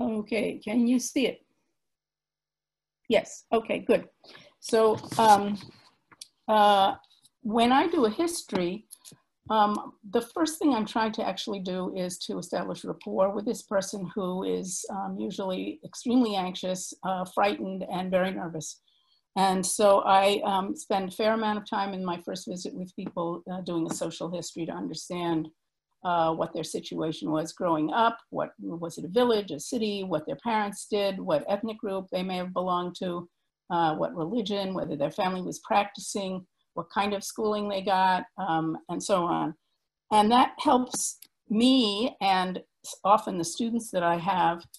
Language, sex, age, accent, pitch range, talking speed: English, female, 50-69, American, 175-220 Hz, 160 wpm